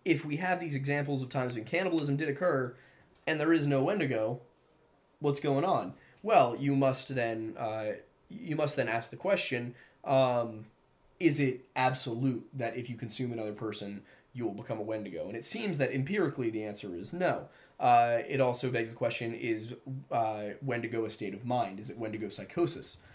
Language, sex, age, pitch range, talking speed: English, male, 20-39, 110-135 Hz, 185 wpm